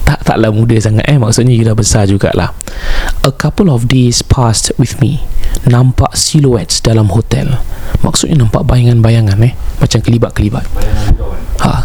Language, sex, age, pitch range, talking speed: Malay, male, 20-39, 90-135 Hz, 140 wpm